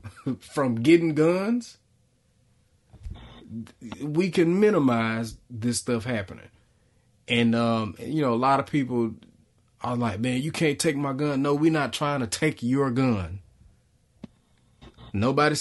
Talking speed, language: 130 wpm, English